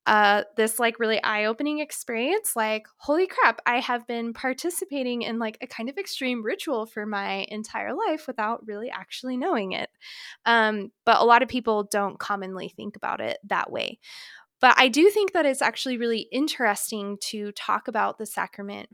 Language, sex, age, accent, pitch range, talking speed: English, female, 20-39, American, 210-255 Hz, 175 wpm